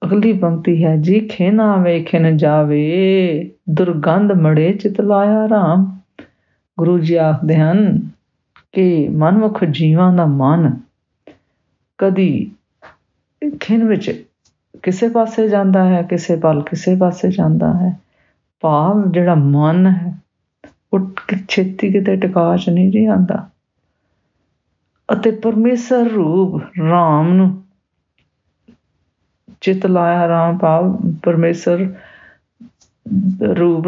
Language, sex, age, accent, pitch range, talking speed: English, female, 50-69, Indian, 160-195 Hz, 95 wpm